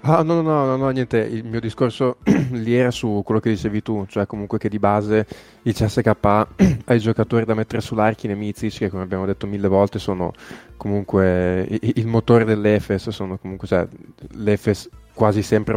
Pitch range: 105-125 Hz